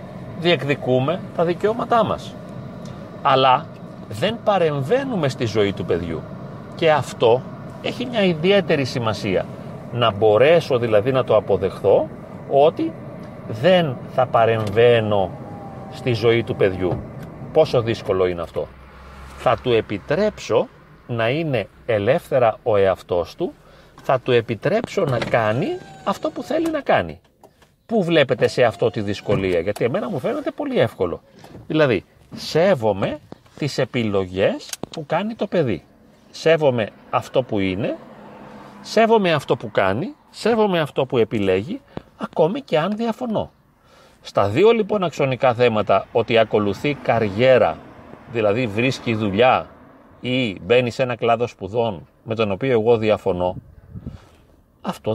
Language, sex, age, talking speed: Greek, male, 40-59, 125 wpm